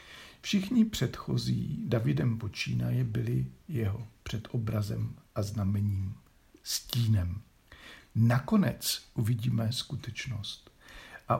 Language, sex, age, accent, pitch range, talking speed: Czech, male, 50-69, native, 105-135 Hz, 80 wpm